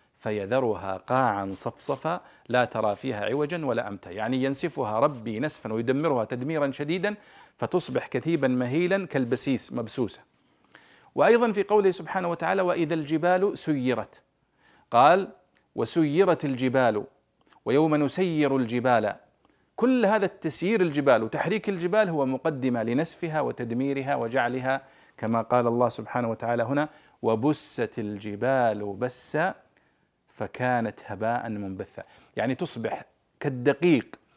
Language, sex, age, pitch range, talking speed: Arabic, male, 40-59, 115-155 Hz, 105 wpm